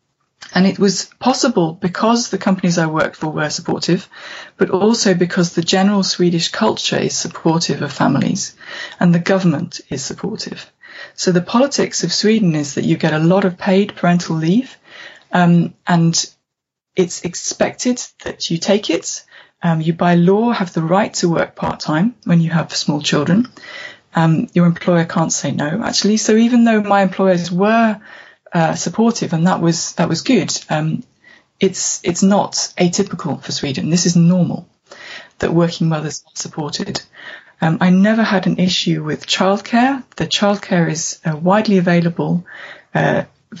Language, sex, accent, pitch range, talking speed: English, female, British, 165-195 Hz, 160 wpm